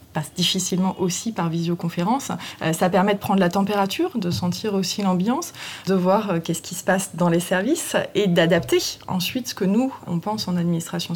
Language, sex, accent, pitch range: French, female, French, 175-220 Hz